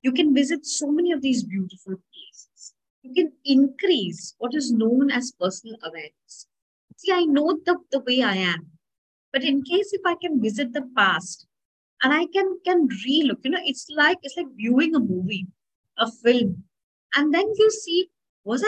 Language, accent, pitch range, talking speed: English, Indian, 220-305 Hz, 180 wpm